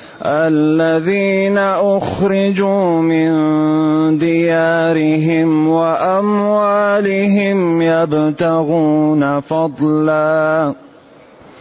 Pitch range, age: 155-185 Hz, 30-49